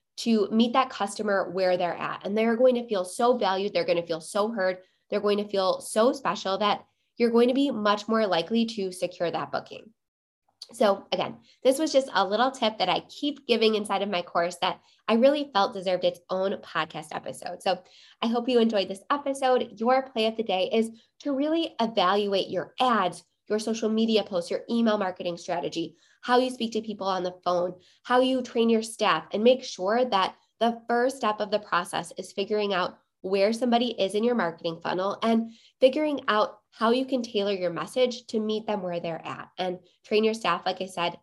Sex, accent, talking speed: female, American, 210 wpm